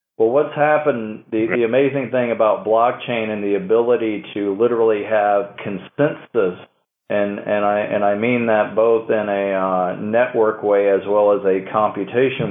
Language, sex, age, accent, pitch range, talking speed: English, male, 40-59, American, 100-120 Hz, 165 wpm